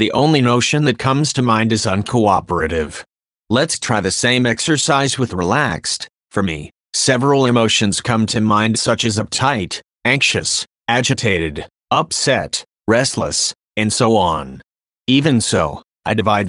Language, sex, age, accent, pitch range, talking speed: English, male, 30-49, American, 105-125 Hz, 135 wpm